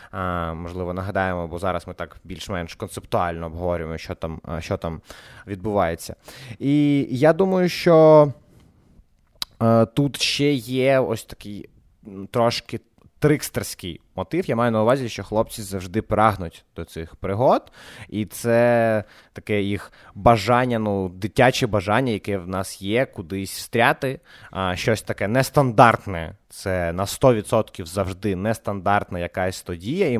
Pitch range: 95-120 Hz